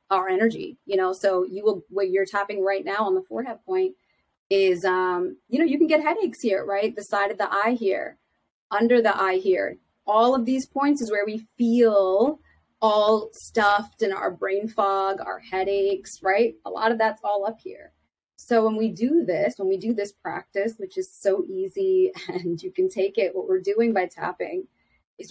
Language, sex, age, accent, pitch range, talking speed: English, female, 30-49, American, 195-275 Hz, 200 wpm